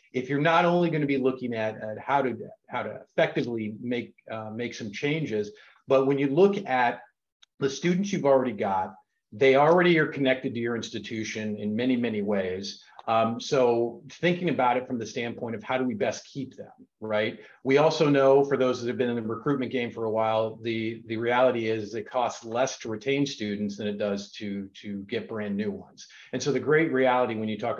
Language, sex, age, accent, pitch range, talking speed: English, male, 40-59, American, 105-135 Hz, 215 wpm